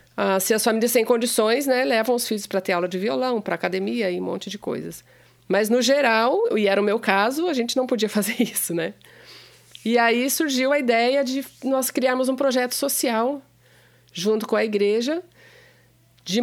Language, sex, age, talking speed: English, female, 40-59, 195 wpm